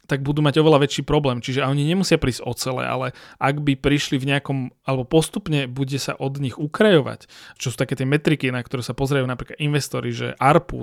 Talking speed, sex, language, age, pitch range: 205 wpm, male, Czech, 30-49, 130-150 Hz